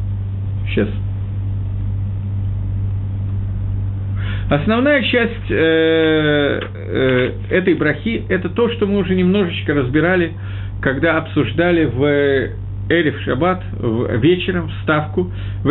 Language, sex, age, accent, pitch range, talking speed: Russian, male, 50-69, native, 100-160 Hz, 90 wpm